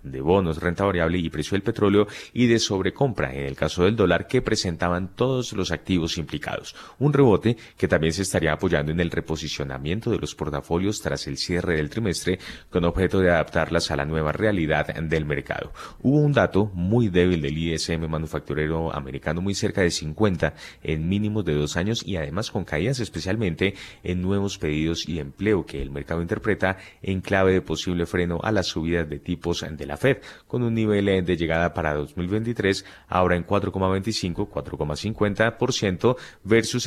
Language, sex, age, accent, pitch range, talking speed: Spanish, male, 30-49, Colombian, 80-100 Hz, 175 wpm